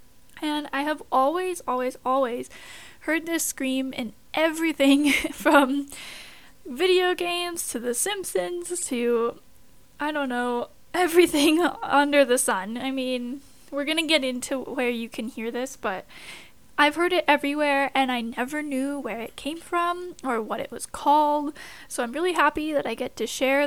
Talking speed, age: 160 wpm, 10-29